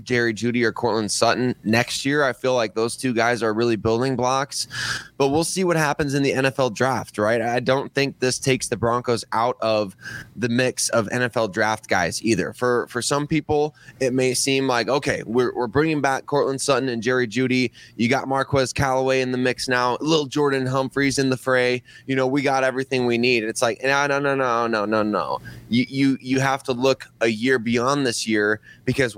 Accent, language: American, English